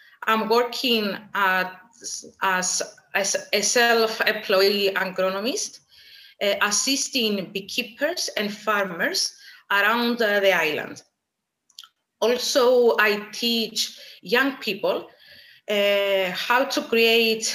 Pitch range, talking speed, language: 200-245 Hz, 90 wpm, English